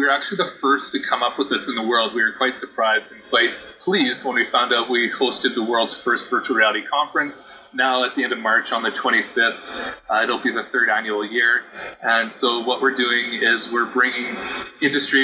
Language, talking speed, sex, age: English, 225 wpm, male, 30-49